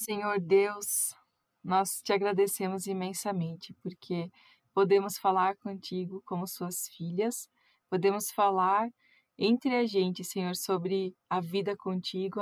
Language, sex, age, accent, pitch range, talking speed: Portuguese, female, 20-39, Brazilian, 180-205 Hz, 110 wpm